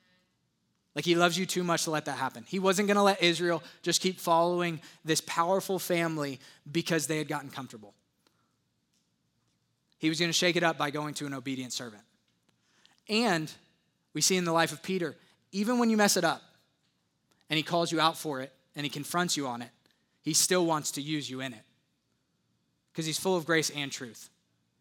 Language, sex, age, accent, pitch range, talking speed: English, male, 20-39, American, 145-170 Hz, 195 wpm